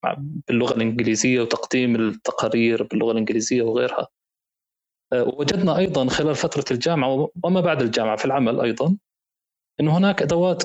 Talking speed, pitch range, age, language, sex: 120 wpm, 115-155 Hz, 30-49, Arabic, male